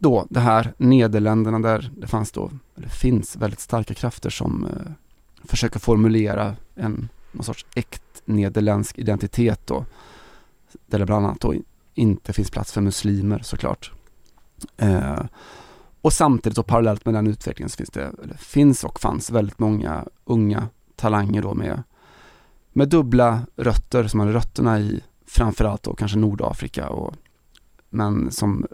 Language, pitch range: Swedish, 105-120 Hz